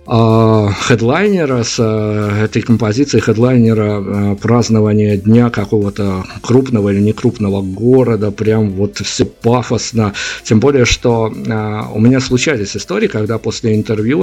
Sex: male